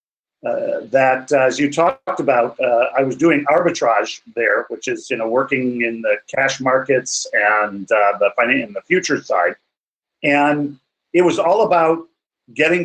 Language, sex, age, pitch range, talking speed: English, male, 50-69, 140-180 Hz, 165 wpm